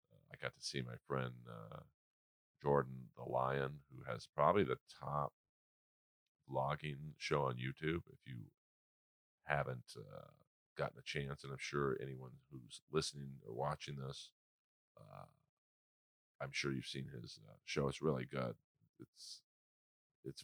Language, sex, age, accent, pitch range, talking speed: English, male, 40-59, American, 65-75 Hz, 140 wpm